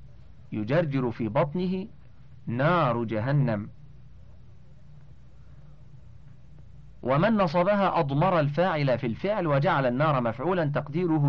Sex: male